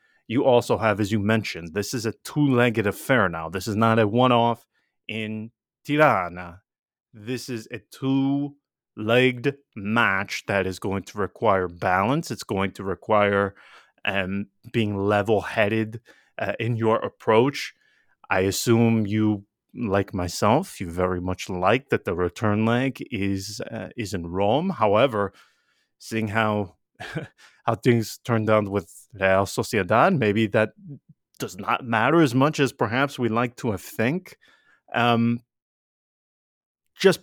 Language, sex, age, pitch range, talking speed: English, male, 30-49, 100-130 Hz, 135 wpm